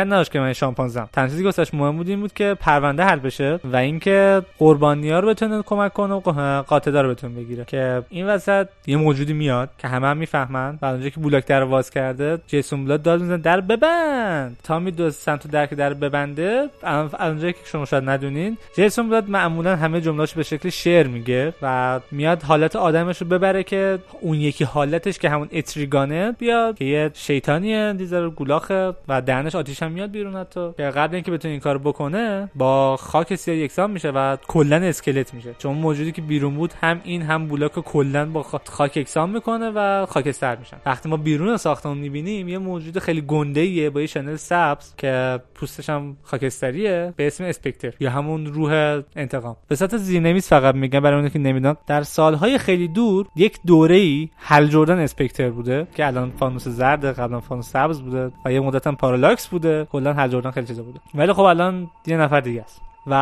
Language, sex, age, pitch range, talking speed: Persian, male, 20-39, 140-175 Hz, 190 wpm